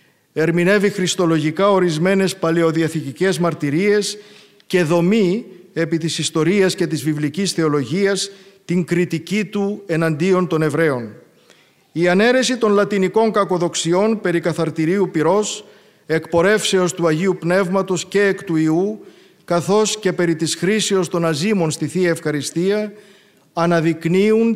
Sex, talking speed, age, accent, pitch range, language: male, 115 wpm, 50-69, native, 165-200 Hz, Greek